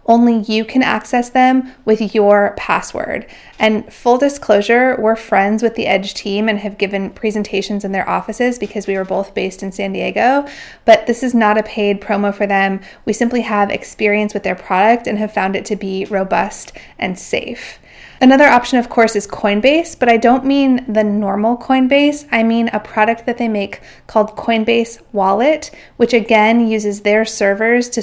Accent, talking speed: American, 185 wpm